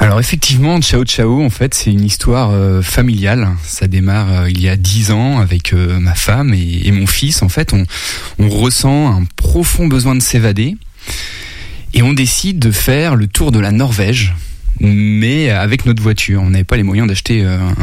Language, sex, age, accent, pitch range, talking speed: French, male, 20-39, French, 100-120 Hz, 195 wpm